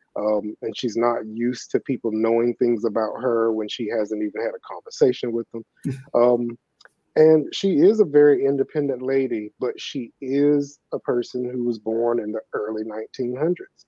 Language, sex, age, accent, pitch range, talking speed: English, male, 30-49, American, 110-135 Hz, 175 wpm